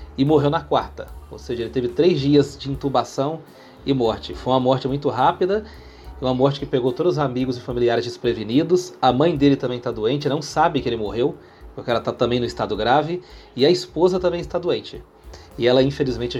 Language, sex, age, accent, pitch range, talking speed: Portuguese, male, 30-49, Brazilian, 120-145 Hz, 205 wpm